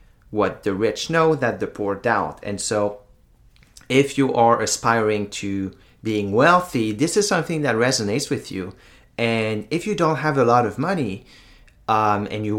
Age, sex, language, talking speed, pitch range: 30-49, male, English, 170 wpm, 105-135 Hz